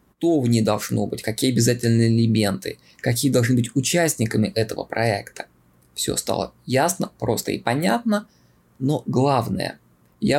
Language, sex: Russian, male